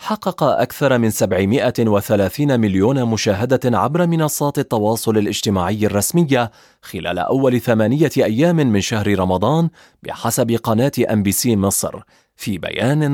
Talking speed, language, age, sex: 110 wpm, Arabic, 30-49, male